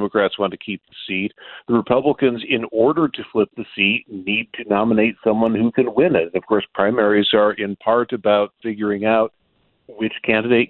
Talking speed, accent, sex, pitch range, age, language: 185 wpm, American, male, 100-125 Hz, 40-59, English